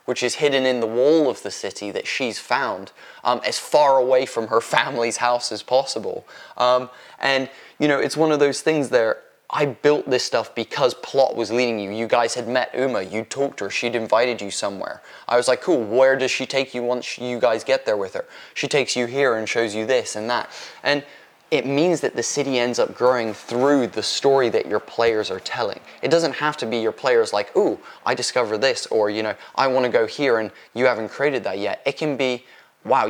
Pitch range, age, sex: 110-140 Hz, 20-39, male